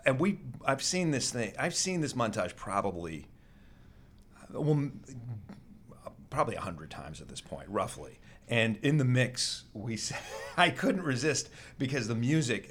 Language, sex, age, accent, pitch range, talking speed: English, male, 40-59, American, 95-130 Hz, 145 wpm